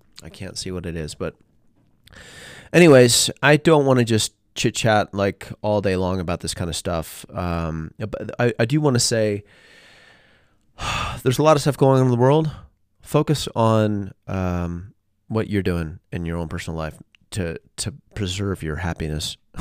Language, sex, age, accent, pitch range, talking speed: English, male, 30-49, American, 80-110 Hz, 170 wpm